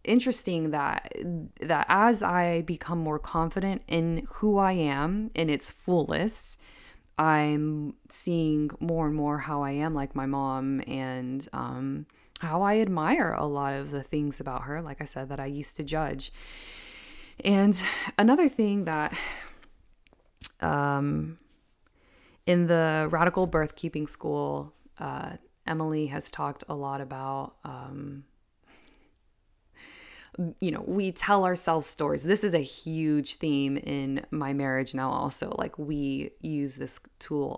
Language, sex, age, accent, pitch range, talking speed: English, female, 20-39, American, 140-170 Hz, 135 wpm